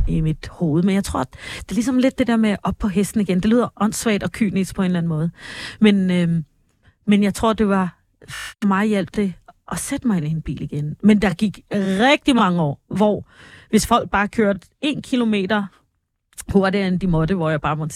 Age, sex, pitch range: 30-49, female, 170-215 Hz